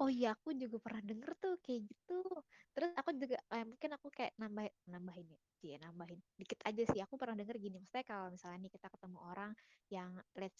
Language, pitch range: Indonesian, 195-235 Hz